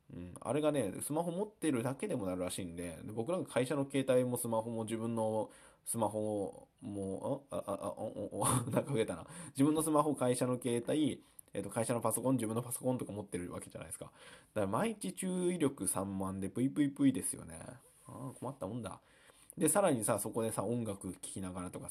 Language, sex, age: Japanese, male, 20-39